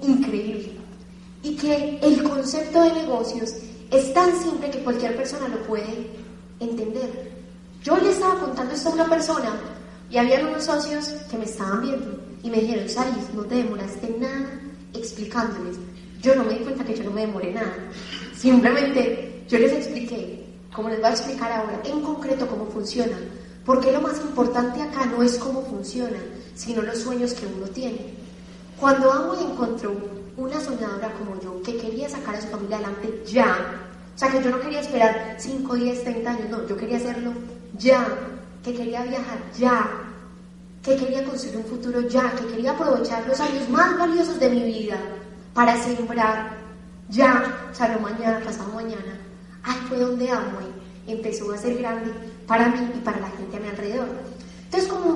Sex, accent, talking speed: female, Colombian, 175 wpm